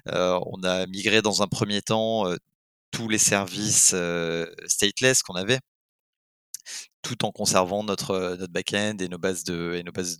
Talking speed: 175 wpm